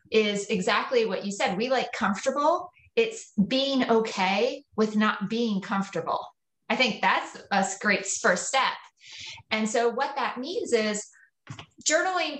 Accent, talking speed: American, 140 wpm